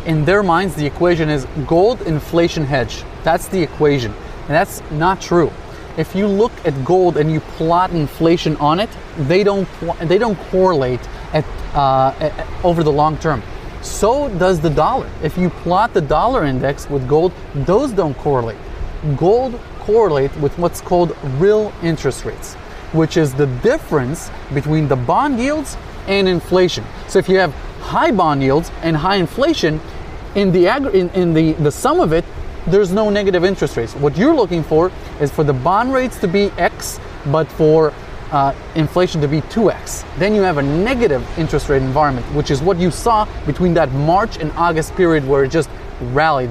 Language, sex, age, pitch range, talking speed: English, male, 30-49, 145-185 Hz, 175 wpm